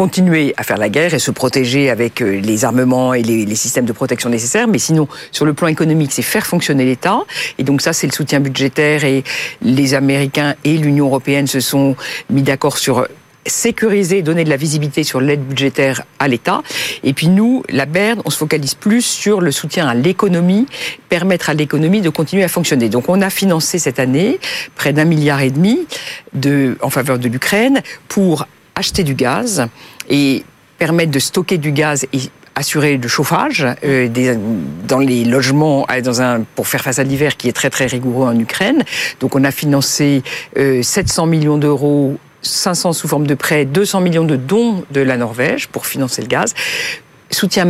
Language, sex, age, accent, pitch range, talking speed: French, female, 50-69, French, 135-170 Hz, 185 wpm